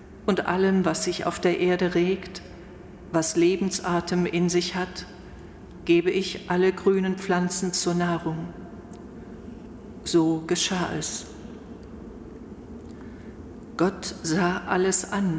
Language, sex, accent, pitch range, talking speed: German, female, German, 160-185 Hz, 105 wpm